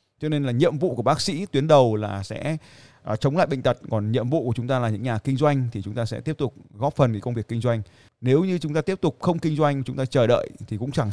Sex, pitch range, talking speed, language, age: male, 115-150 Hz, 300 wpm, Vietnamese, 20-39